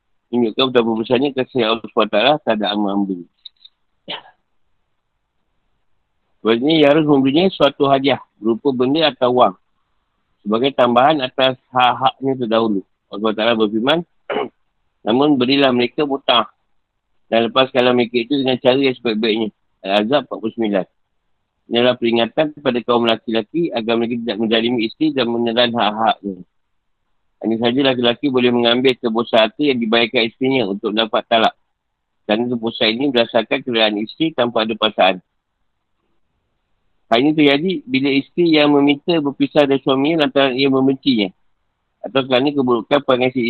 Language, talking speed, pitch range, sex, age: Malay, 130 wpm, 115-135 Hz, male, 50-69